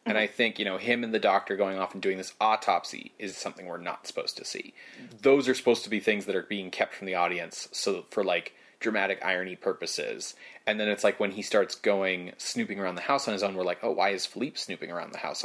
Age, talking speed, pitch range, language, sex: 30-49, 255 wpm, 95-120 Hz, English, male